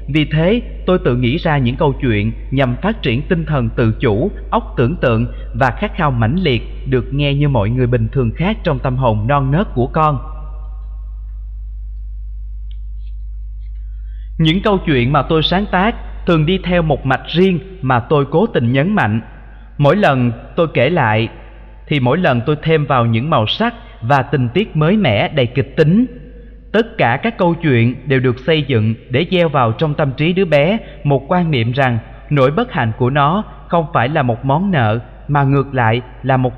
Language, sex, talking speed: Vietnamese, male, 190 wpm